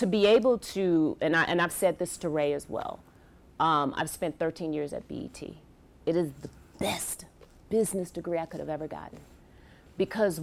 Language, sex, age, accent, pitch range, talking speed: English, female, 40-59, American, 150-185 Hz, 190 wpm